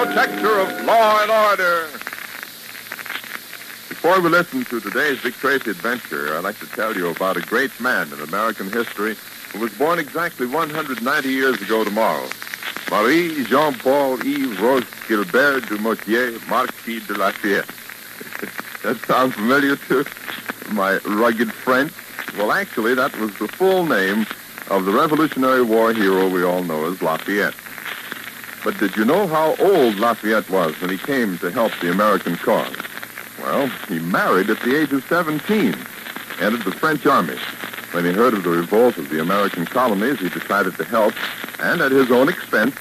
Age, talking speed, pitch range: 60-79, 160 wpm, 105-155 Hz